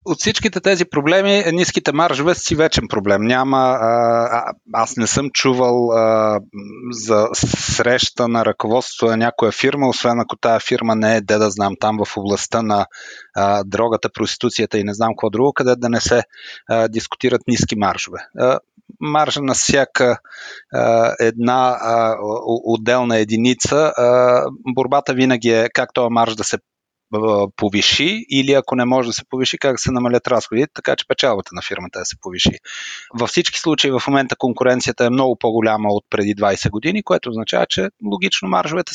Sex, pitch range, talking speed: male, 110-145 Hz, 170 wpm